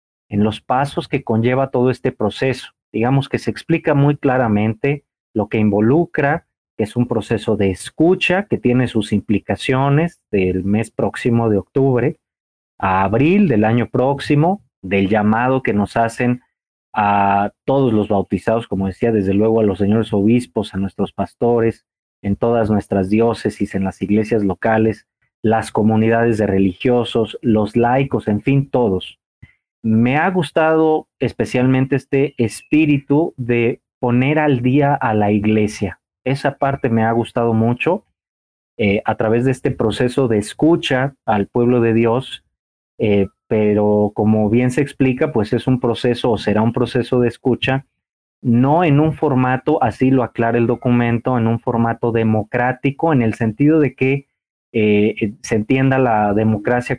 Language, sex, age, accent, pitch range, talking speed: Spanish, male, 40-59, Mexican, 105-130 Hz, 150 wpm